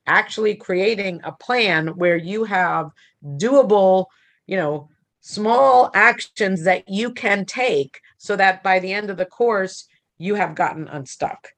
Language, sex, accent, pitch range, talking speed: English, female, American, 180-235 Hz, 145 wpm